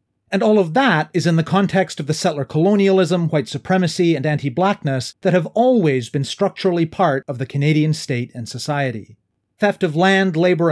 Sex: male